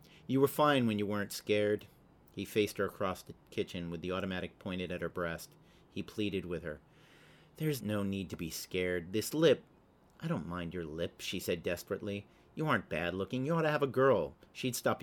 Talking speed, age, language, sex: 205 wpm, 40-59, English, male